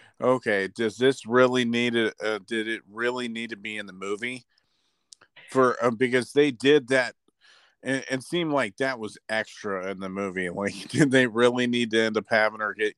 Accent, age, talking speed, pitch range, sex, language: American, 40-59, 200 wpm, 110-130 Hz, male, English